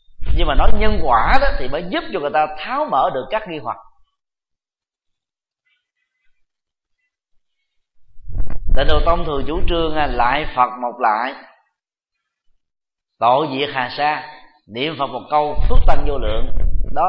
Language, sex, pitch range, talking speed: Vietnamese, male, 130-205 Hz, 145 wpm